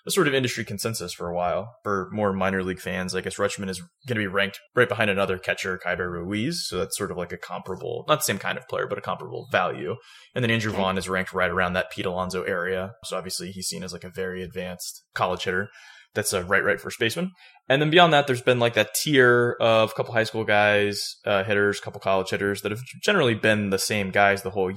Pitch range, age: 95-120 Hz, 20-39